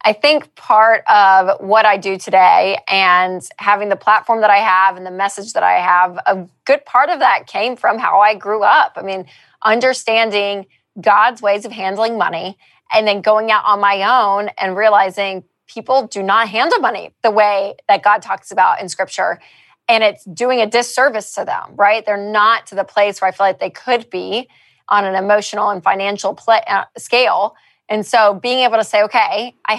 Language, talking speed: English, 195 wpm